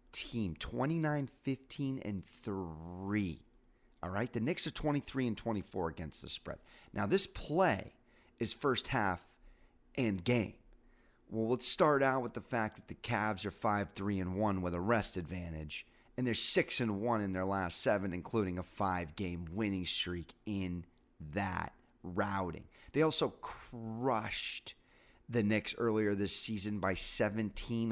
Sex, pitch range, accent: male, 95-120 Hz, American